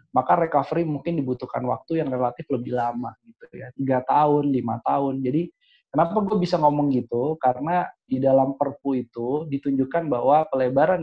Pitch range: 125-165 Hz